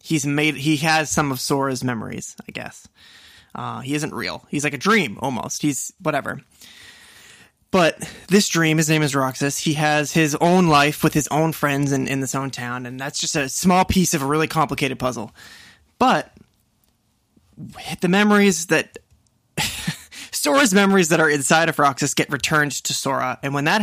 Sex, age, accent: male, 20-39, American